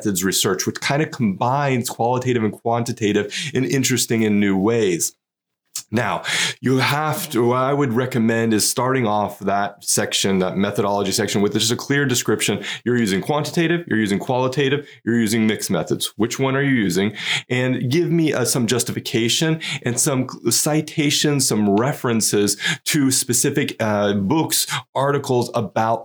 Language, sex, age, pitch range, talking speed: English, male, 30-49, 105-135 Hz, 150 wpm